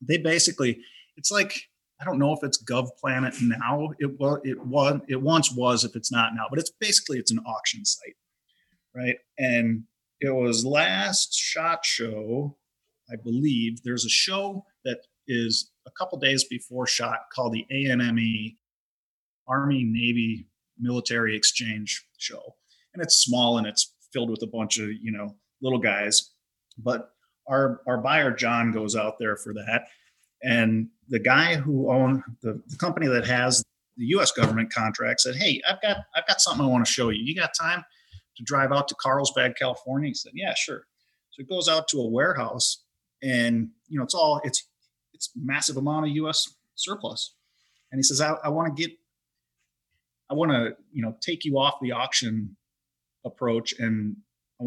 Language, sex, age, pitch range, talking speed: English, male, 30-49, 115-140 Hz, 170 wpm